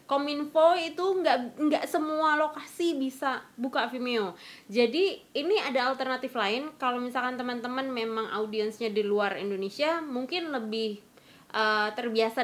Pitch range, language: 210-270 Hz, Indonesian